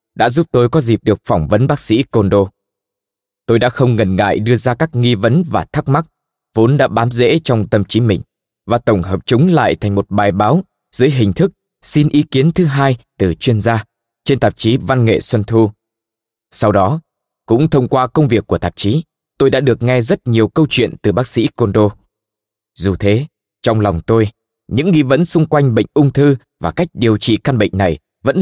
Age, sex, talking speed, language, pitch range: 20-39, male, 215 wpm, Vietnamese, 105-135 Hz